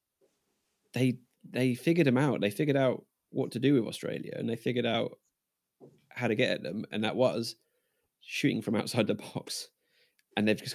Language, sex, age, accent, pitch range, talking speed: English, male, 20-39, British, 110-130 Hz, 185 wpm